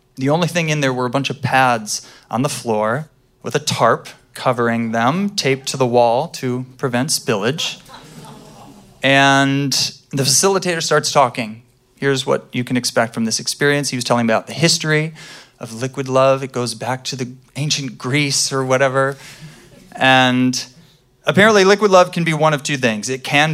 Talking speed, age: 175 wpm, 30-49